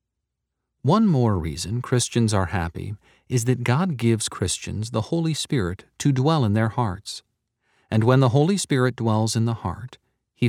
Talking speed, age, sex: 165 wpm, 40-59, male